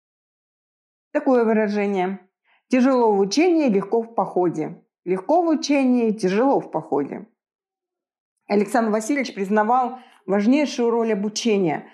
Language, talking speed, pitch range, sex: Russian, 100 wpm, 200-245 Hz, female